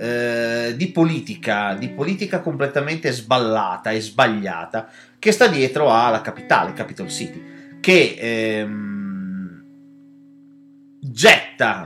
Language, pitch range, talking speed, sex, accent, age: Italian, 110-170 Hz, 90 wpm, male, native, 30-49